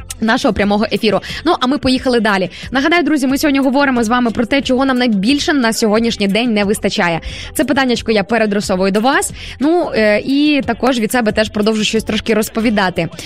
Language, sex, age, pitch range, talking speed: Ukrainian, female, 20-39, 220-280 Hz, 185 wpm